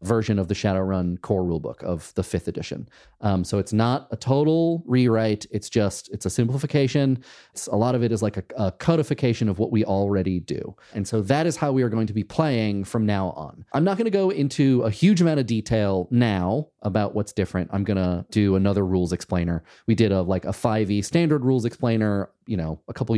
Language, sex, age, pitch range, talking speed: English, male, 30-49, 95-125 Hz, 215 wpm